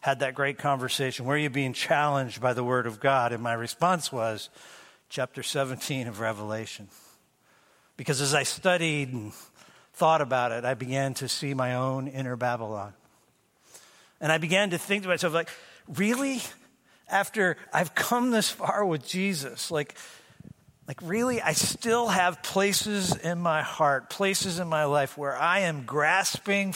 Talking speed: 160 wpm